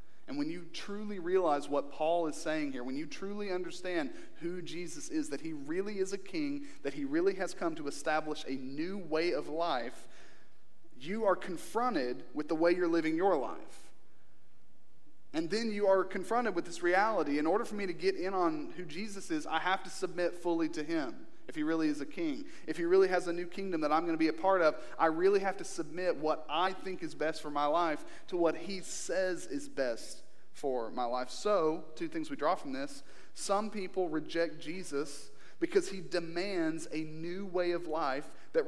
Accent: American